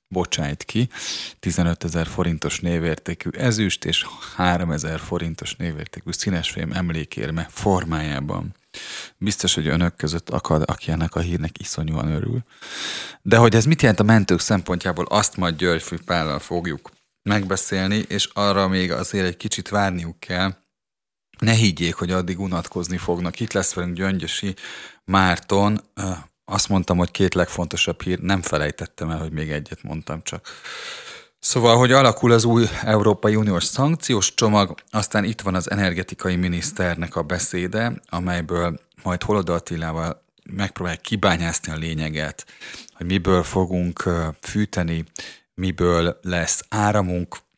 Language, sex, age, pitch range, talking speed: Hungarian, male, 30-49, 85-100 Hz, 130 wpm